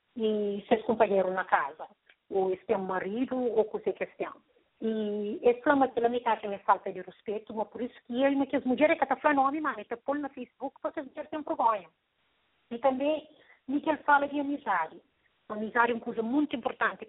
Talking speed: 195 wpm